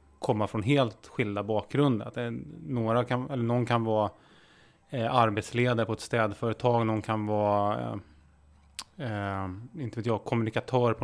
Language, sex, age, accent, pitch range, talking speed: Swedish, male, 20-39, Norwegian, 105-125 Hz, 150 wpm